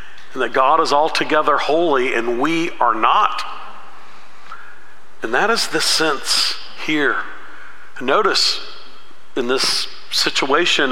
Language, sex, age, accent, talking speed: English, male, 50-69, American, 110 wpm